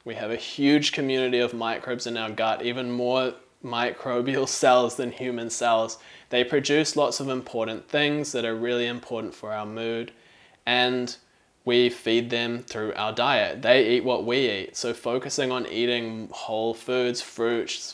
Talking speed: 165 wpm